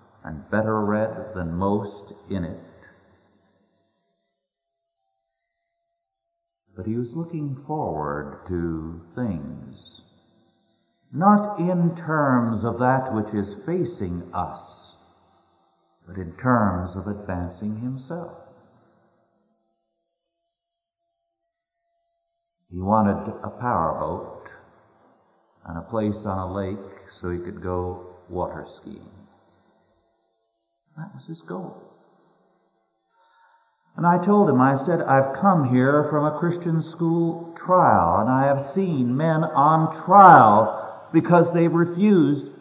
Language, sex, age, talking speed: English, male, 50-69, 105 wpm